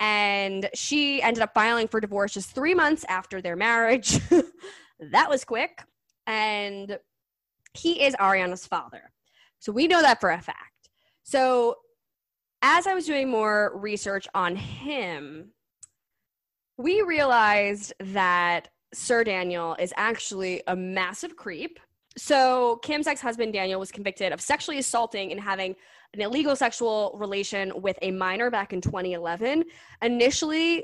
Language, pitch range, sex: English, 190-255 Hz, female